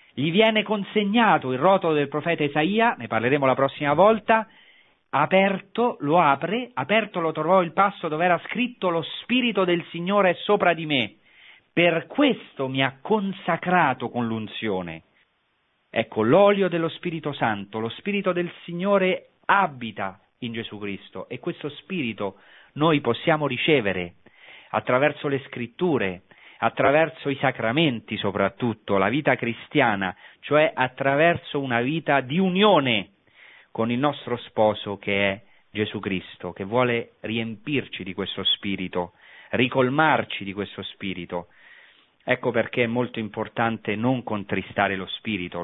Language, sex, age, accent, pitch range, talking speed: Italian, male, 40-59, native, 110-175 Hz, 135 wpm